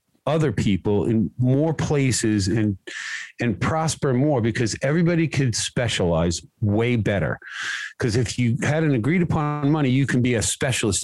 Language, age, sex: English, 50-69, male